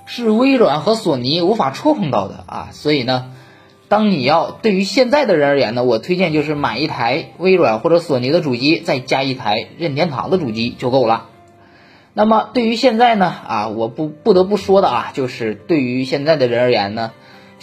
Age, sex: 20-39, male